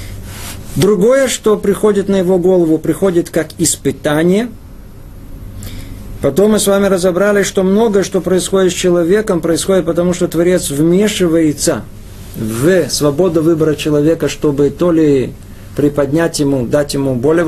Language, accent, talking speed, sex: Russian, native, 125 wpm, male